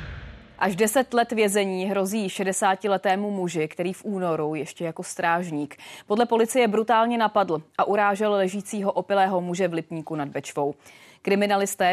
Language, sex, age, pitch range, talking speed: Czech, female, 30-49, 170-215 Hz, 135 wpm